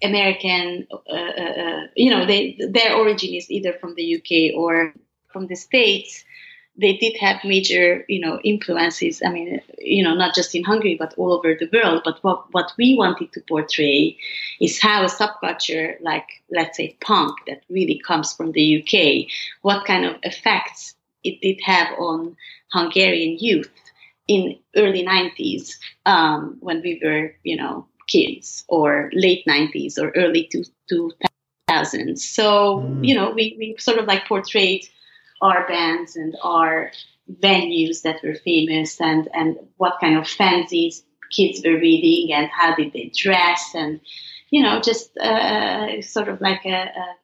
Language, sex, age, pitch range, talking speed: English, female, 30-49, 165-210 Hz, 160 wpm